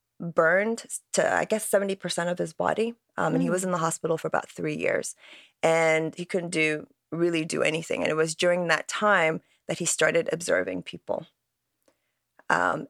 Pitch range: 155-185 Hz